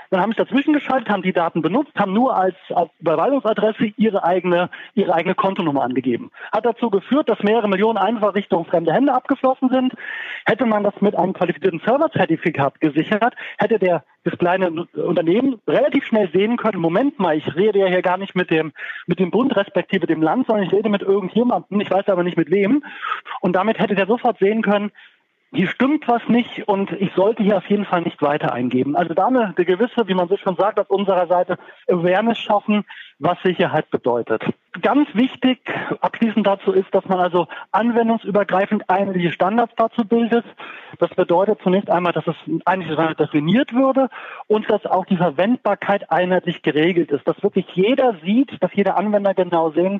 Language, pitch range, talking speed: German, 175-220 Hz, 185 wpm